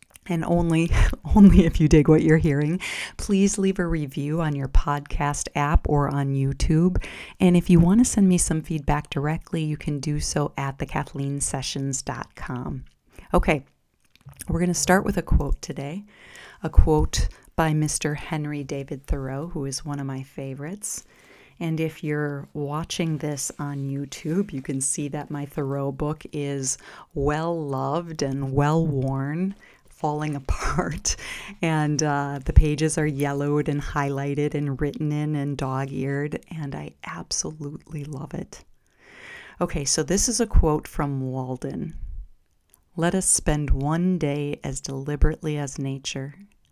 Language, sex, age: English, female, 40-59